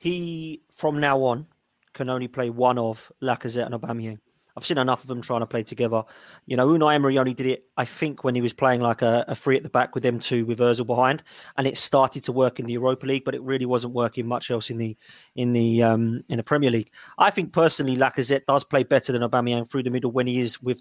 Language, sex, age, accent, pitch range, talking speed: English, male, 20-39, British, 125-140 Hz, 255 wpm